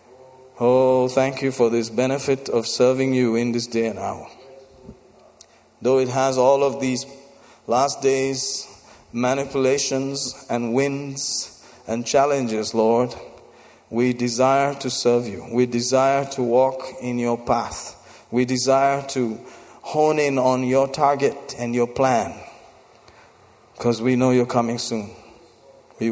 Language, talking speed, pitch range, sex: English, 135 wpm, 120-140 Hz, male